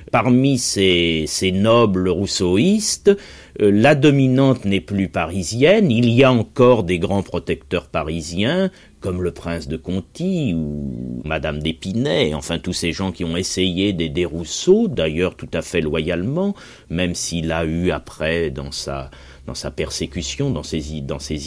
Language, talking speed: French, 155 wpm